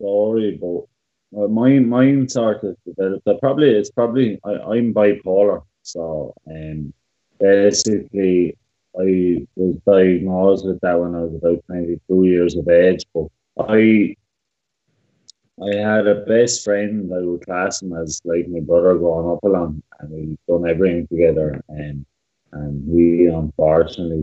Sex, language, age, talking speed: male, English, 20-39, 140 wpm